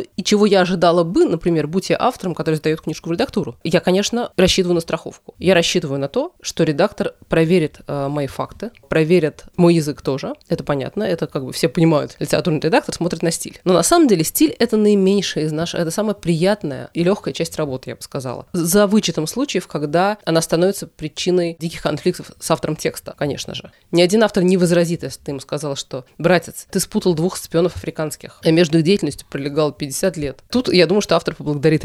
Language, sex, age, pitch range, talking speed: Russian, female, 20-39, 155-185 Hz, 200 wpm